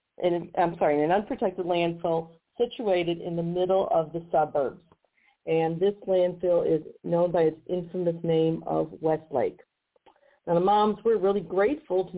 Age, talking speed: 50-69, 155 wpm